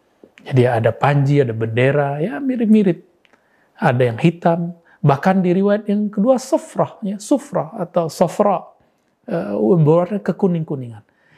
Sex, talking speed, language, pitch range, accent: male, 115 wpm, Indonesian, 130-175 Hz, native